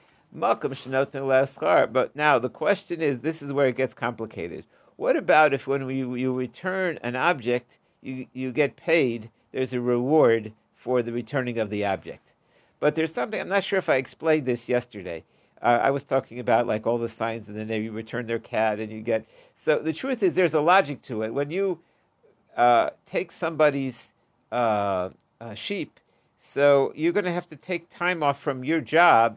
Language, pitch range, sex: English, 125-170 Hz, male